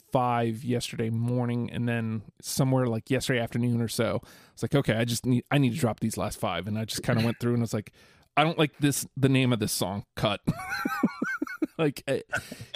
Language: English